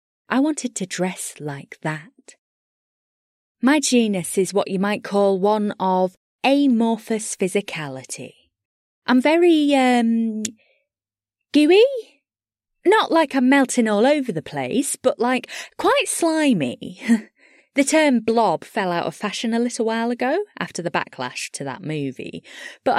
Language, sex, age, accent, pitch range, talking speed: English, female, 20-39, British, 185-275 Hz, 135 wpm